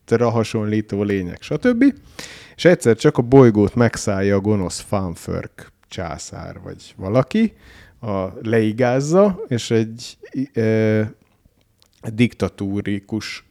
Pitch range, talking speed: 100-120 Hz, 95 wpm